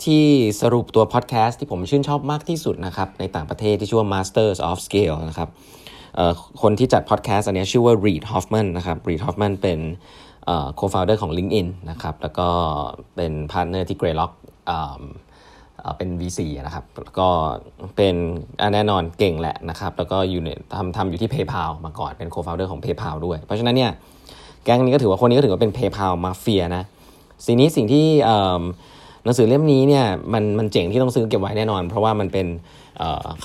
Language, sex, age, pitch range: Thai, male, 20-39, 90-115 Hz